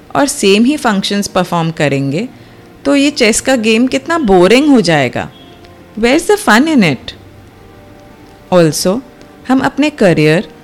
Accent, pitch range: native, 160-245 Hz